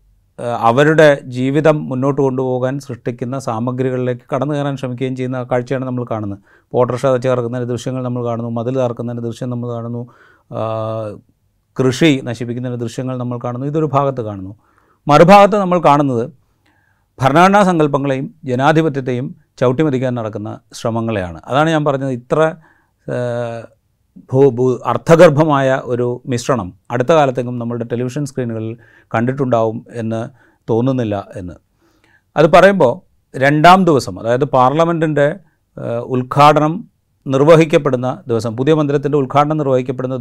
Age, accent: 30-49, native